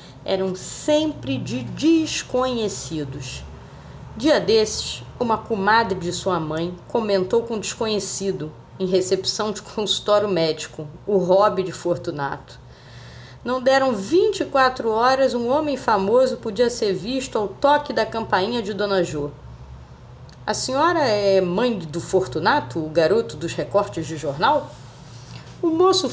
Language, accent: Portuguese, Brazilian